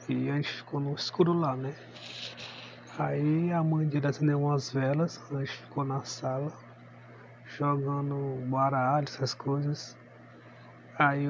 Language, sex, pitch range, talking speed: Portuguese, male, 130-145 Hz, 135 wpm